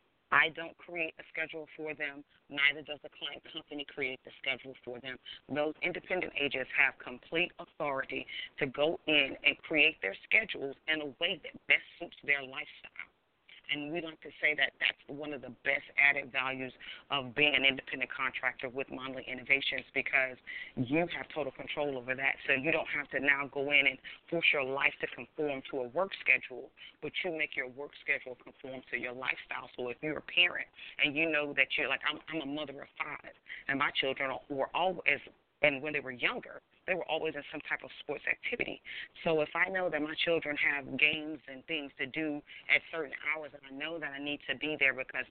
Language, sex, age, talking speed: English, female, 30-49, 205 wpm